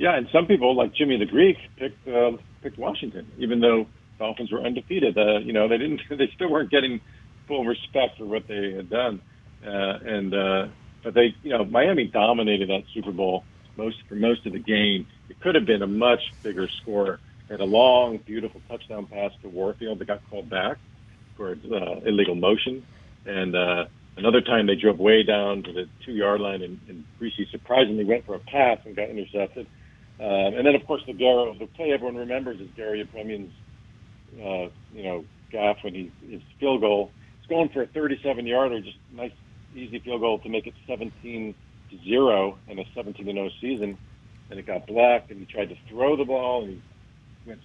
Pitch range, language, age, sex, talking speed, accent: 100-120 Hz, English, 50-69, male, 195 wpm, American